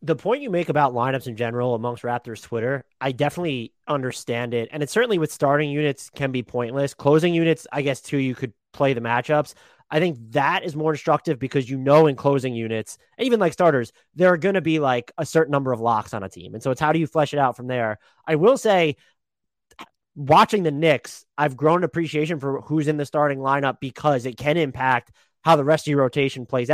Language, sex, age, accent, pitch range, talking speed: English, male, 30-49, American, 125-160 Hz, 225 wpm